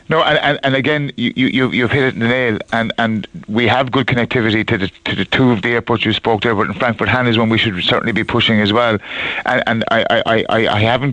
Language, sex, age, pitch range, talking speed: English, male, 30-49, 115-130 Hz, 270 wpm